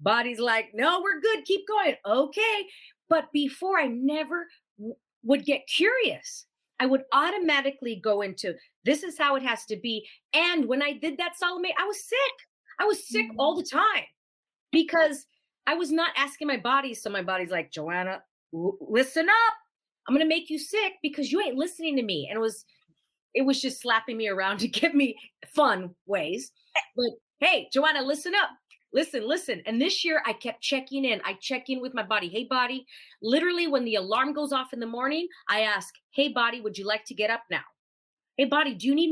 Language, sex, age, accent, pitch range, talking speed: English, female, 40-59, American, 225-320 Hz, 200 wpm